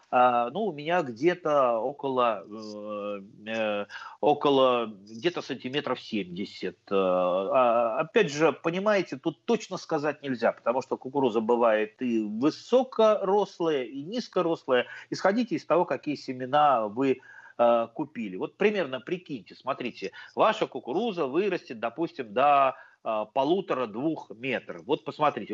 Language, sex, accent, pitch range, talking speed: Russian, male, native, 120-180 Hz, 105 wpm